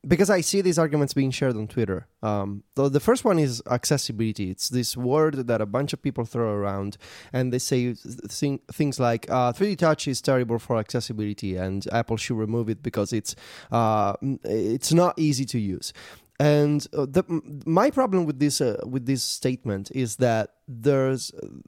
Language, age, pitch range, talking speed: English, 20-39, 115-150 Hz, 185 wpm